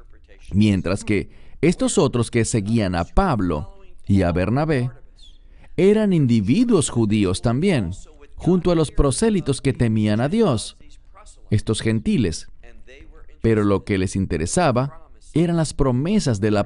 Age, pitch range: 40-59, 100-145 Hz